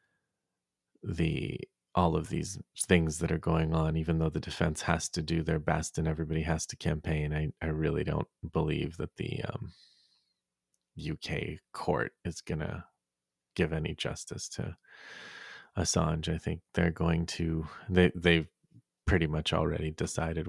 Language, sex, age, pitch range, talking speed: English, male, 30-49, 80-90 Hz, 150 wpm